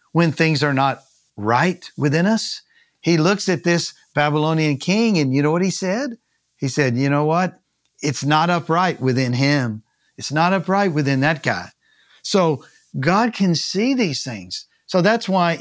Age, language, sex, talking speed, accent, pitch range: 50-69, English, male, 170 wpm, American, 140-190 Hz